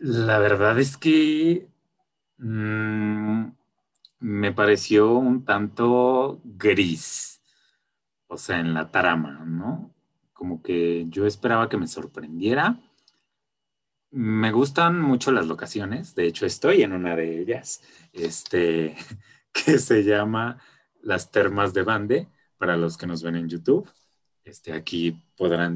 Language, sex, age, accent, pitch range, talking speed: Spanish, male, 30-49, Mexican, 90-135 Hz, 125 wpm